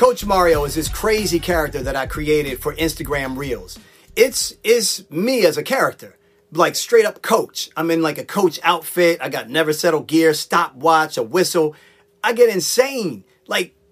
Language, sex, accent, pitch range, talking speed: English, male, American, 160-225 Hz, 175 wpm